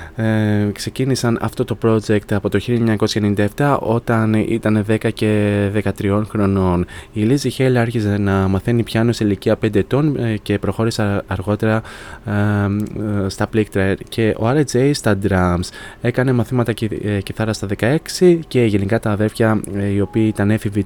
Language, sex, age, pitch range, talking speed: Greek, male, 20-39, 100-115 Hz, 135 wpm